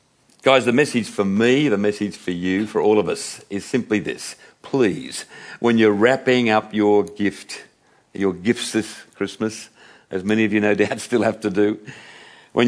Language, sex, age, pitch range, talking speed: English, male, 60-79, 105-130 Hz, 180 wpm